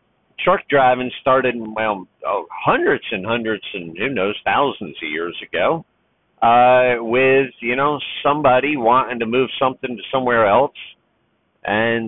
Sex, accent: male, American